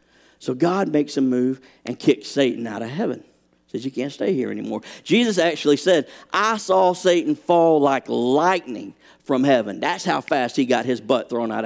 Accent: American